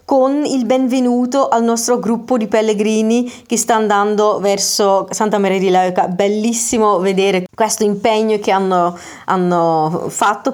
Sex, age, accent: female, 30-49, native